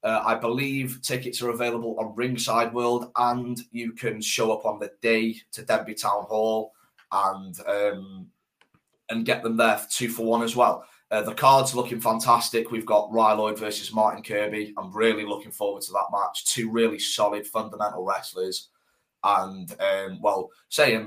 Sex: male